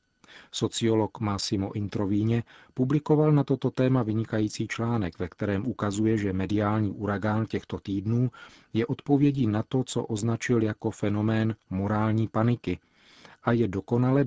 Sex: male